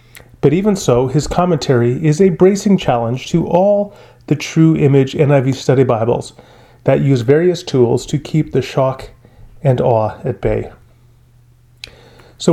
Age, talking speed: 30-49, 145 wpm